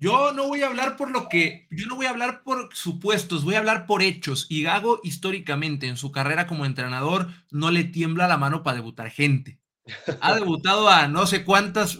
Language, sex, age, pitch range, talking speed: Spanish, male, 30-49, 140-185 Hz, 210 wpm